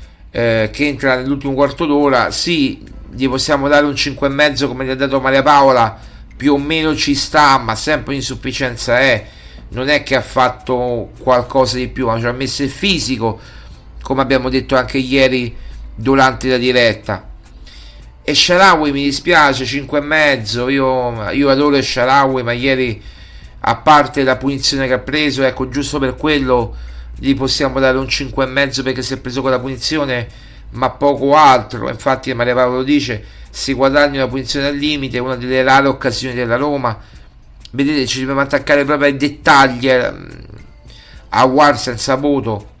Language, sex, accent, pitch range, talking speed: Italian, male, native, 115-140 Hz, 160 wpm